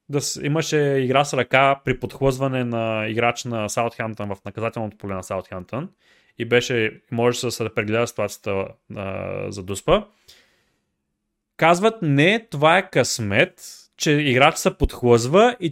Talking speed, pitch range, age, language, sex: 135 wpm, 125-180 Hz, 20-39, Bulgarian, male